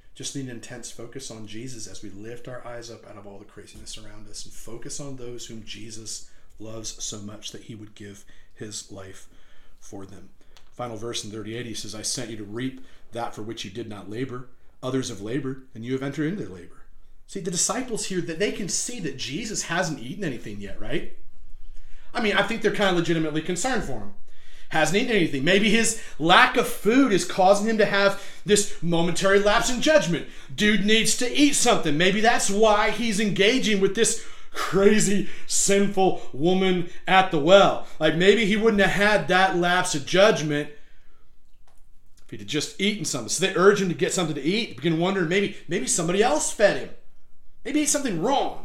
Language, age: English, 40-59